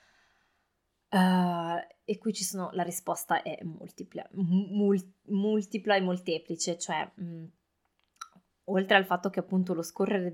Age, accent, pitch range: 20-39, native, 170-195 Hz